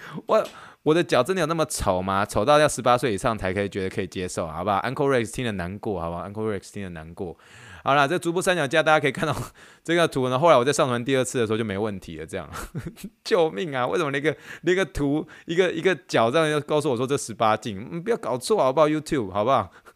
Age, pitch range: 20-39, 100-150 Hz